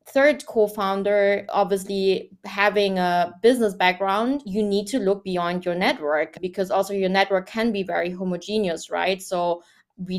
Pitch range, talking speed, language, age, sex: 185-215 Hz, 145 wpm, English, 20-39, female